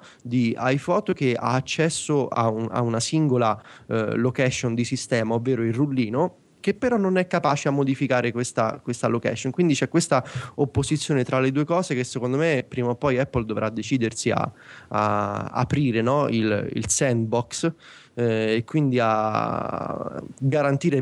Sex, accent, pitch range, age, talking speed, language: male, native, 115-140 Hz, 20-39, 155 wpm, Italian